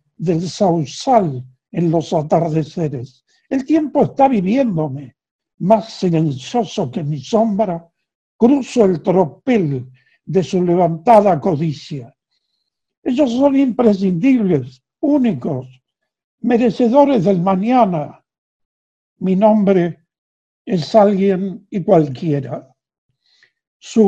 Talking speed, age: 85 wpm, 60-79